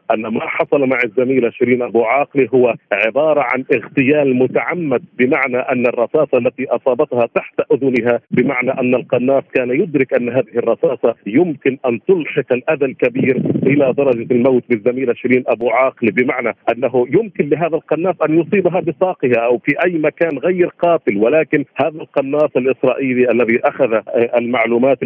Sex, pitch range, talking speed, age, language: male, 125-150 Hz, 145 wpm, 50-69, Arabic